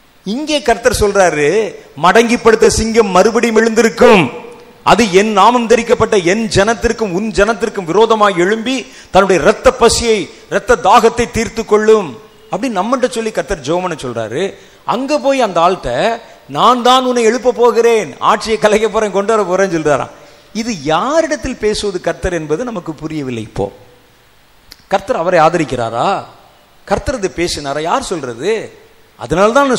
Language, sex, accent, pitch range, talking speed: Tamil, male, native, 190-255 Hz, 120 wpm